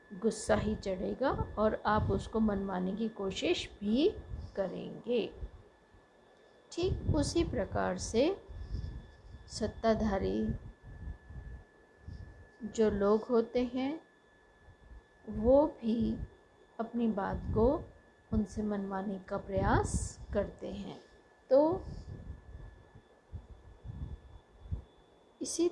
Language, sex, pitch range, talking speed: Hindi, female, 195-250 Hz, 75 wpm